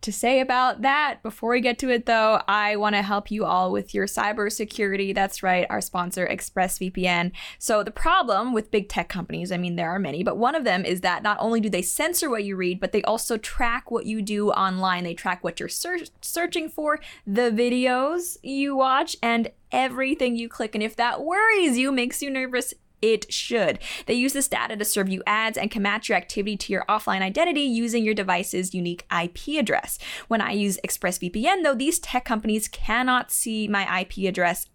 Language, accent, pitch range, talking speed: English, American, 195-245 Hz, 200 wpm